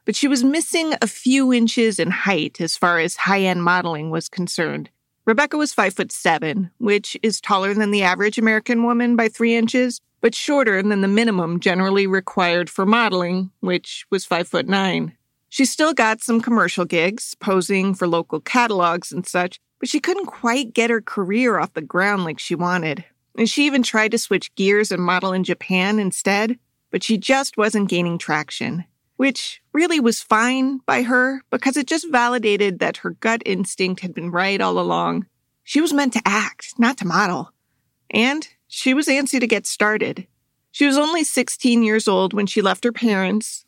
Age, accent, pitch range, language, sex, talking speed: 40-59, American, 185-240 Hz, English, female, 185 wpm